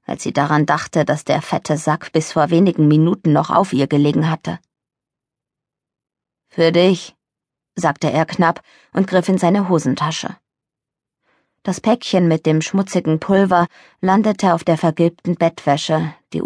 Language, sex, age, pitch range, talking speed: German, female, 20-39, 155-185 Hz, 140 wpm